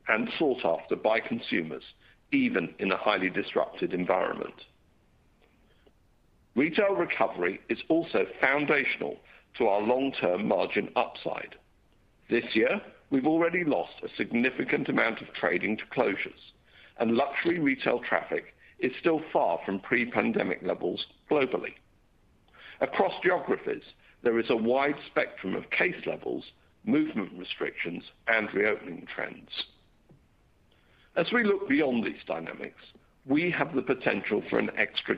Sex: male